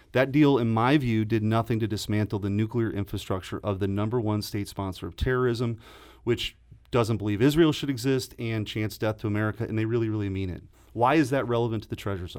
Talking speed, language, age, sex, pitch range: 215 wpm, English, 30-49, male, 105-125 Hz